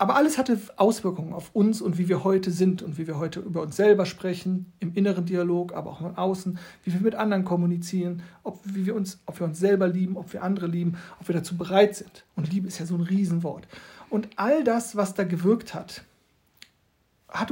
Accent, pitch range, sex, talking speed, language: German, 180-215 Hz, male, 220 wpm, German